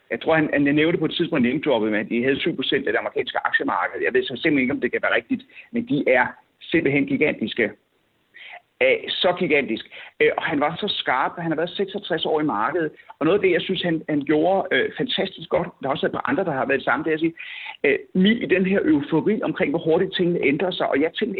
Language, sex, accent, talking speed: Danish, male, native, 245 wpm